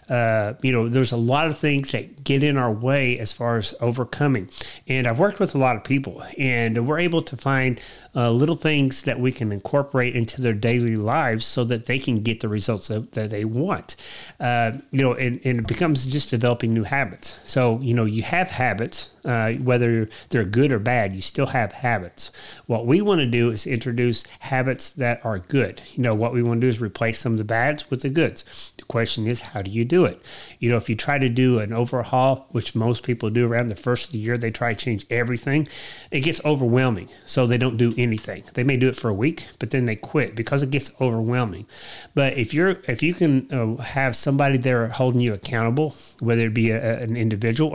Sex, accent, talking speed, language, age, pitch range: male, American, 225 wpm, English, 30-49, 115-135 Hz